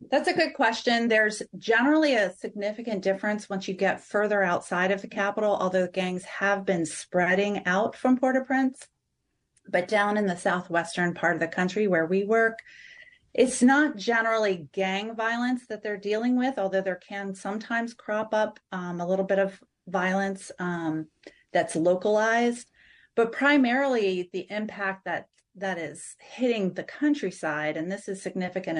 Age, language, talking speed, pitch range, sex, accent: 30-49, English, 155 wpm, 185-225 Hz, female, American